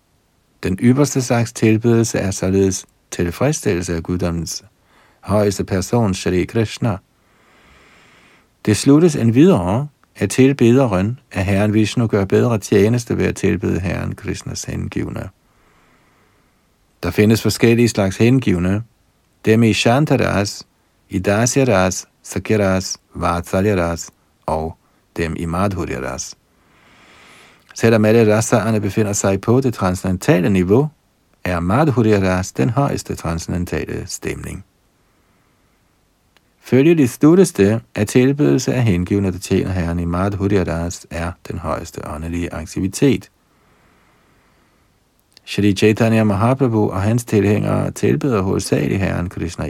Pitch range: 90-115 Hz